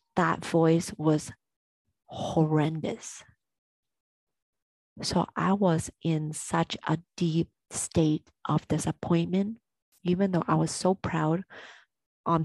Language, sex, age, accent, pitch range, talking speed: English, female, 30-49, American, 160-190 Hz, 100 wpm